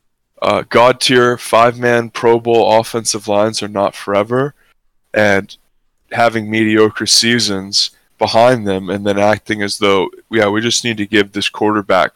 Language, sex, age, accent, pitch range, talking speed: English, male, 20-39, American, 100-120 Hz, 145 wpm